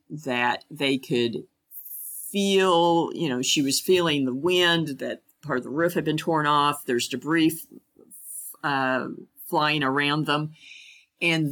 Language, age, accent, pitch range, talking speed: English, 50-69, American, 135-170 Hz, 140 wpm